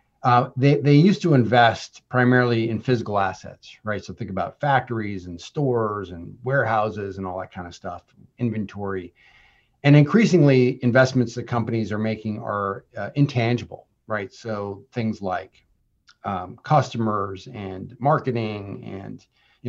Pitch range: 105-130 Hz